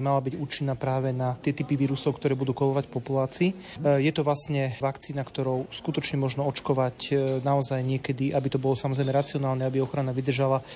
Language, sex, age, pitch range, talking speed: Slovak, male, 30-49, 135-150 Hz, 175 wpm